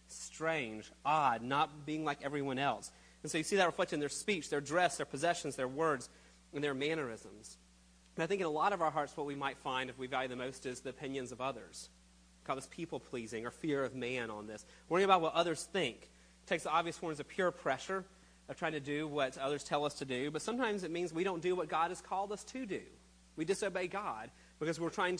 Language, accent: English, American